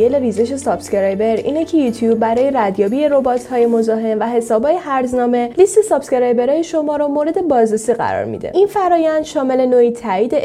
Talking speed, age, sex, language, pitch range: 160 wpm, 10-29, female, Persian, 240-315 Hz